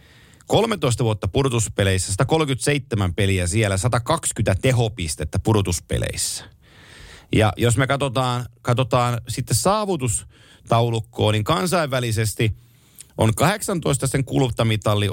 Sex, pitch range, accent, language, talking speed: male, 110-135 Hz, native, Finnish, 85 wpm